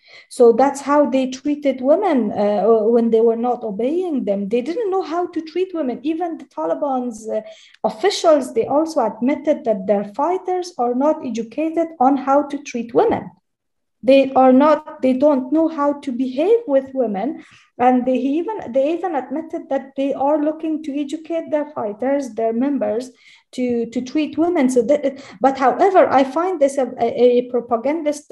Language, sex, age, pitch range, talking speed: English, female, 30-49, 235-310 Hz, 170 wpm